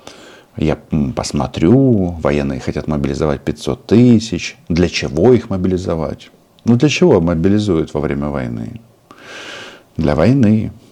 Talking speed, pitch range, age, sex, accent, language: 110 wpm, 80-110 Hz, 50-69, male, native, Russian